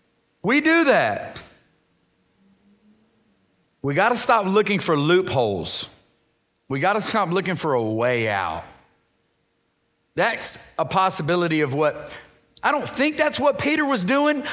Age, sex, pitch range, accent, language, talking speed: 40-59, male, 150-225 Hz, American, English, 130 wpm